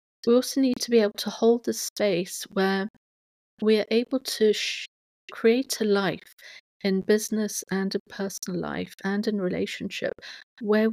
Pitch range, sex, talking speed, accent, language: 185-220 Hz, female, 155 wpm, British, English